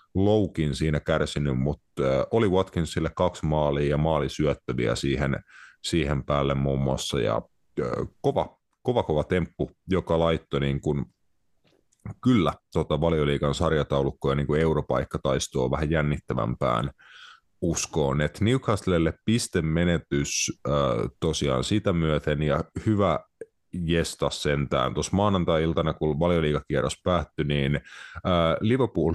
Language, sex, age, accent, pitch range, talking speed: Finnish, male, 30-49, native, 75-90 Hz, 95 wpm